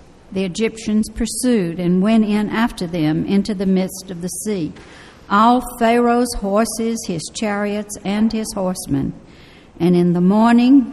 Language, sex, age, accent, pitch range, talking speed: English, female, 60-79, American, 185-225 Hz, 145 wpm